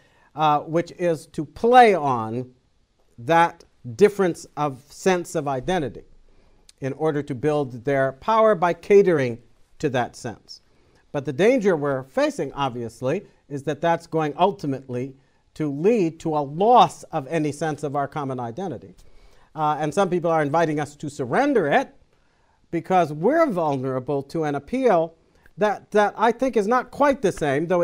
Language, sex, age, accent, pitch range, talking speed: English, male, 50-69, American, 145-195 Hz, 155 wpm